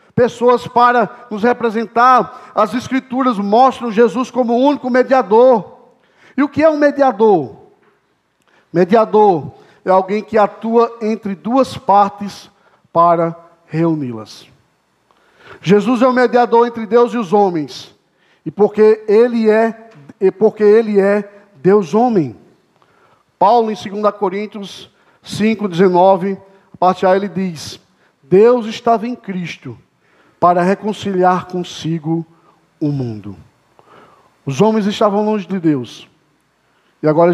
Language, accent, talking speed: Portuguese, Brazilian, 115 wpm